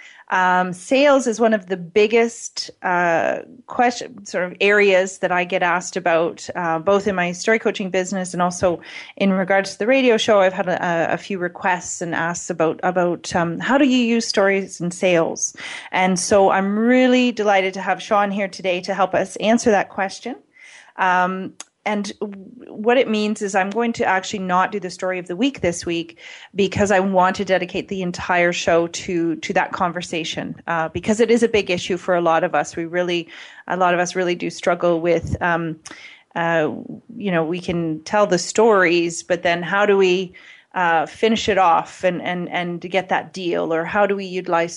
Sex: female